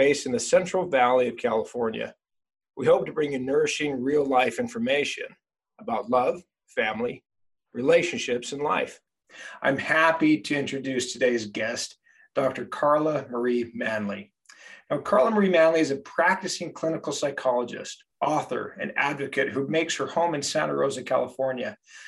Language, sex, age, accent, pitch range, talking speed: English, male, 40-59, American, 135-175 Hz, 140 wpm